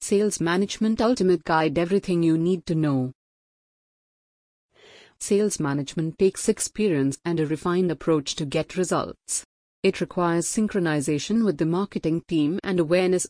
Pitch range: 155-200 Hz